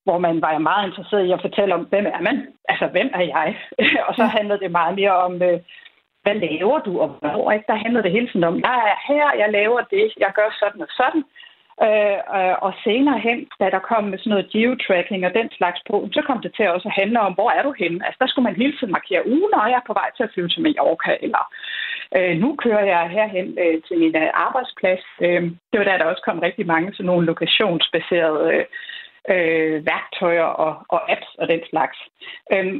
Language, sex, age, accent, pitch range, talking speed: Danish, female, 30-49, native, 175-250 Hz, 215 wpm